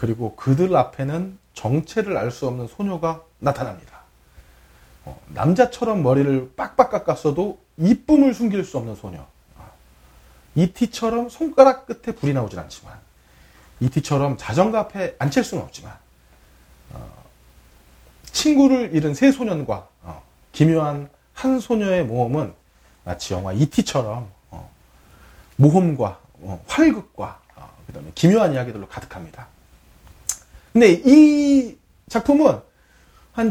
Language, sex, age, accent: Korean, male, 30-49, native